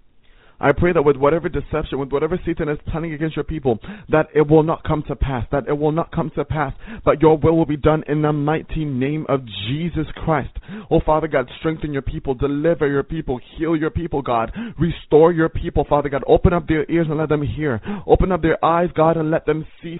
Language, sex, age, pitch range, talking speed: English, male, 20-39, 150-175 Hz, 230 wpm